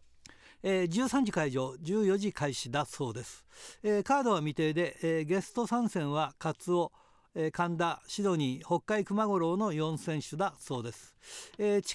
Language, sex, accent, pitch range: Japanese, male, native, 145-200 Hz